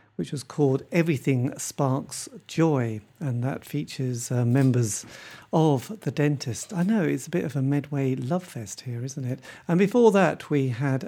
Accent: British